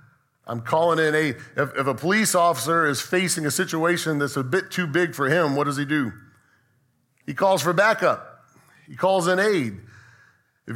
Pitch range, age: 120-175 Hz, 40-59